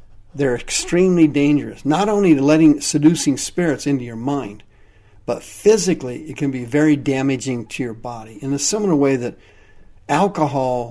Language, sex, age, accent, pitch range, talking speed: English, male, 50-69, American, 105-155 Hz, 155 wpm